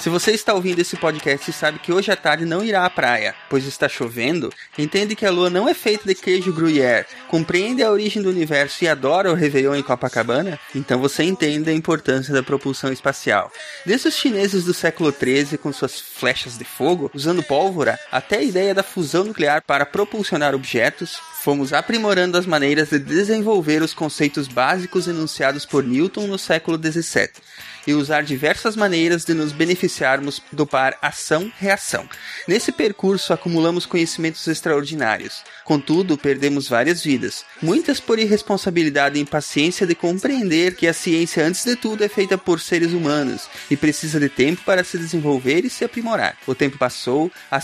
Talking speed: 170 wpm